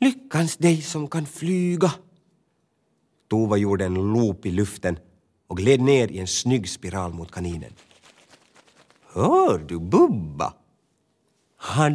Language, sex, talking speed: Swedish, male, 120 wpm